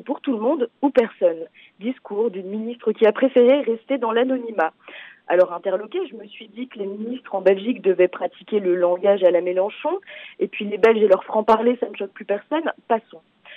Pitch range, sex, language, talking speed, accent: 210-275 Hz, female, French, 210 wpm, French